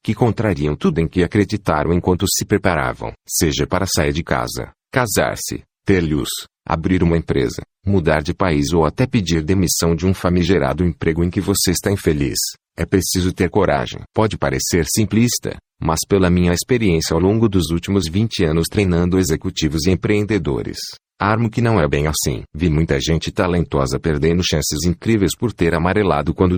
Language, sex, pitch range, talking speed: Portuguese, male, 80-100 Hz, 165 wpm